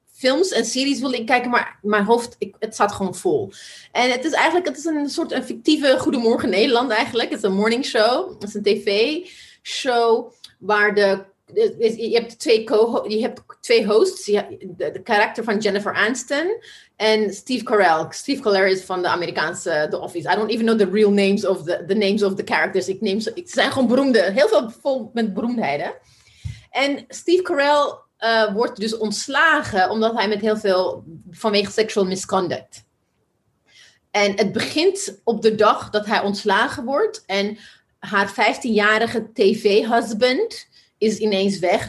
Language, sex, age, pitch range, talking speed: Dutch, female, 30-49, 200-245 Hz, 170 wpm